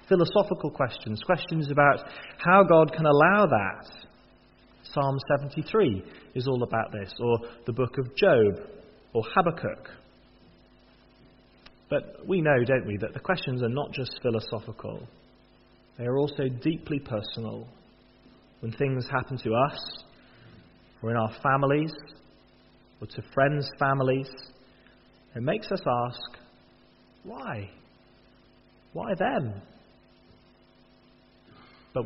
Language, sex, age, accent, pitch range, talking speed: English, male, 30-49, British, 115-145 Hz, 110 wpm